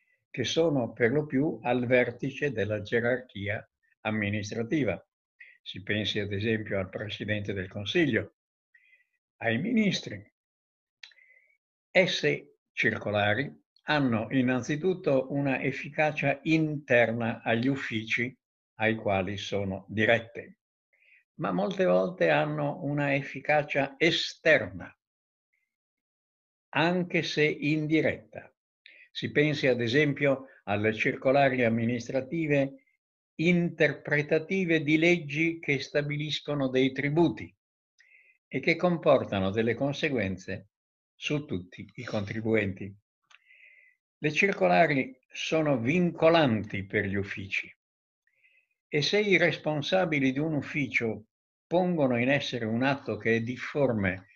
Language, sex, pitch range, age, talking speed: Italian, male, 110-160 Hz, 60-79, 95 wpm